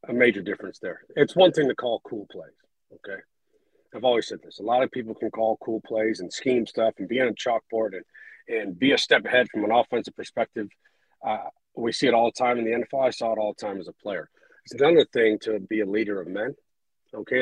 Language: English